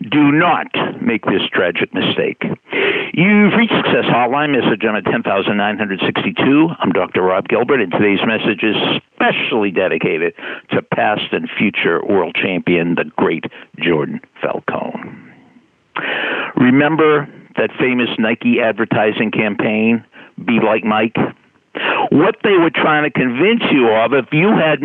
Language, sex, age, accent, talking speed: English, male, 60-79, American, 130 wpm